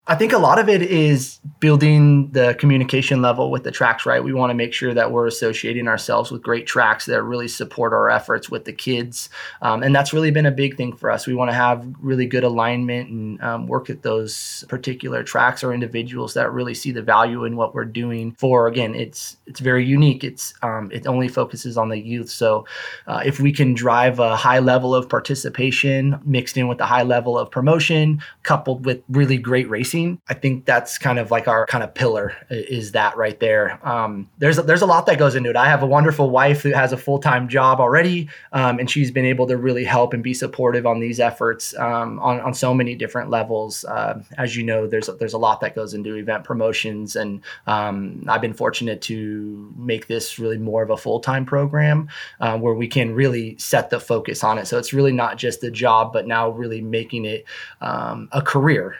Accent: American